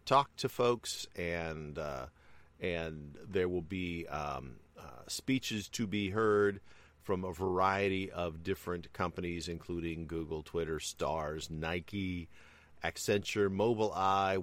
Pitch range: 75-95 Hz